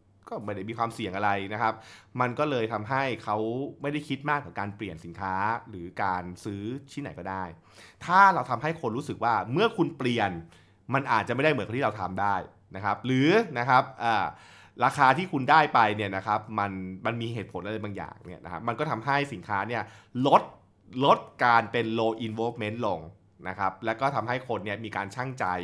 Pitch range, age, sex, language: 100-135 Hz, 20-39, male, Thai